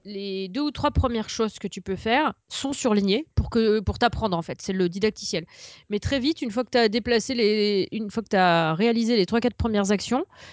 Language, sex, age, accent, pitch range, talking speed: French, female, 30-49, French, 190-235 Hz, 205 wpm